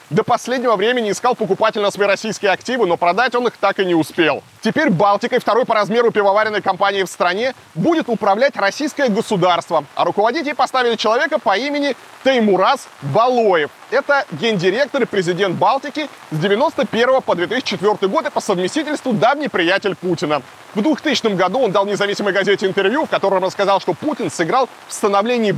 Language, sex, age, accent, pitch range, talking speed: Russian, male, 20-39, native, 190-255 Hz, 165 wpm